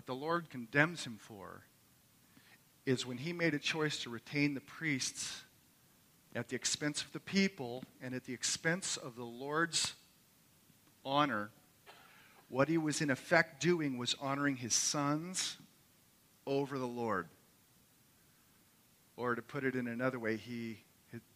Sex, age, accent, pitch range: male, 40-59, American, 115-140 Hz